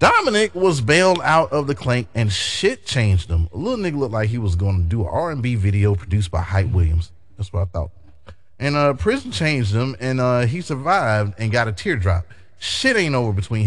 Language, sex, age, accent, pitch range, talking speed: English, male, 30-49, American, 95-130 Hz, 215 wpm